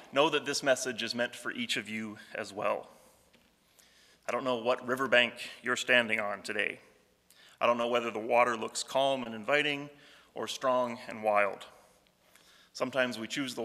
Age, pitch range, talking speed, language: 30-49, 110-130 Hz, 170 wpm, English